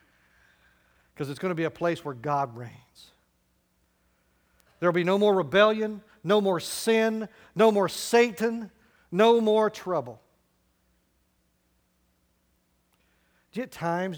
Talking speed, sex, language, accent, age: 125 wpm, male, English, American, 50-69